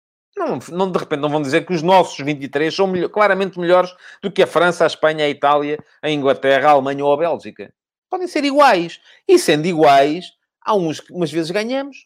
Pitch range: 155-205 Hz